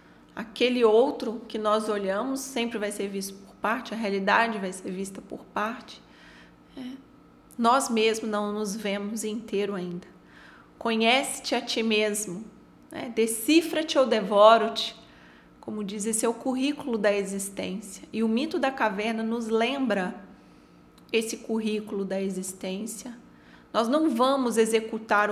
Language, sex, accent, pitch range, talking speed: Portuguese, female, Brazilian, 210-255 Hz, 135 wpm